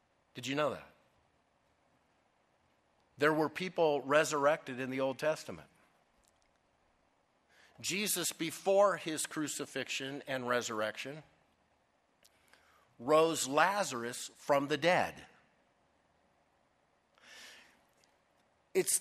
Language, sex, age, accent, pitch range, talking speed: English, male, 50-69, American, 135-170 Hz, 75 wpm